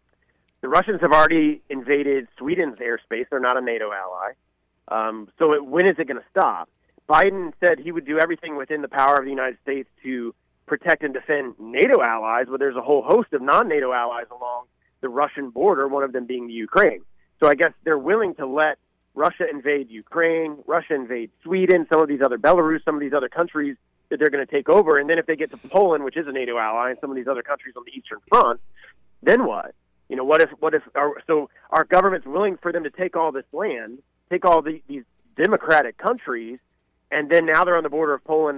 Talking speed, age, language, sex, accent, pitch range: 225 wpm, 30-49, English, male, American, 130-165 Hz